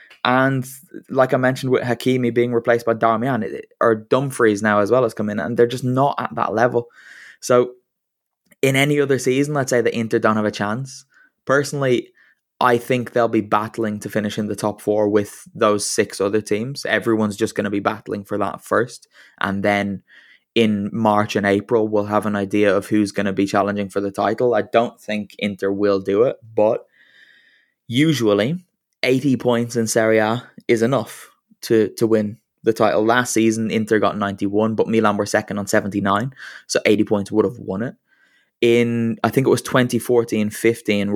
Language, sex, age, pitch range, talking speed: English, male, 10-29, 105-120 Hz, 185 wpm